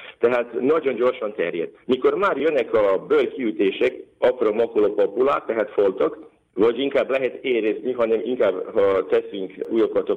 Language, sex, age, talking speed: Hungarian, male, 50-69, 135 wpm